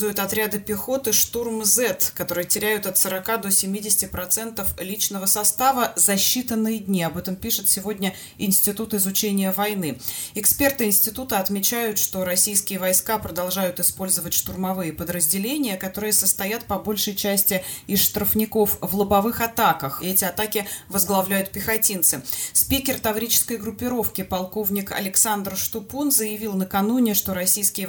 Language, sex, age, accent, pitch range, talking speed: Russian, female, 20-39, native, 185-220 Hz, 125 wpm